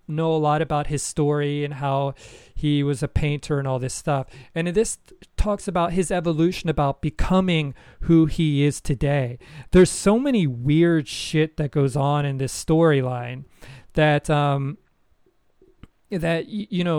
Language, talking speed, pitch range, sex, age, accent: English, 160 wpm, 145-185 Hz, male, 30-49, American